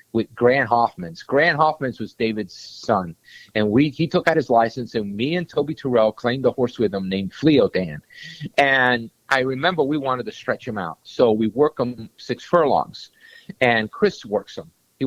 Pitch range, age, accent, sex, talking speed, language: 115-165 Hz, 50-69, American, male, 185 wpm, English